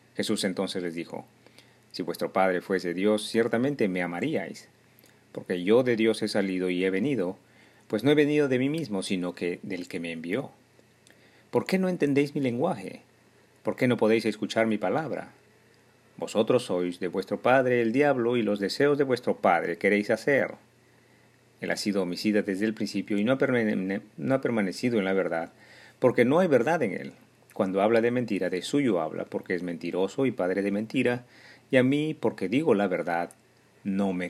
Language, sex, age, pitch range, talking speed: Spanish, male, 40-59, 95-125 Hz, 185 wpm